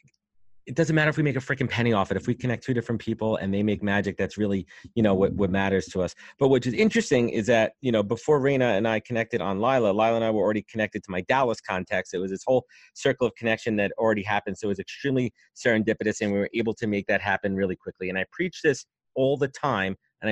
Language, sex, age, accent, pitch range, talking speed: English, male, 30-49, American, 100-125 Hz, 260 wpm